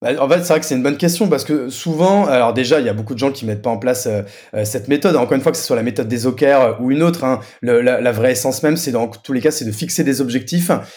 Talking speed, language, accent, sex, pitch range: 315 wpm, French, French, male, 125-170 Hz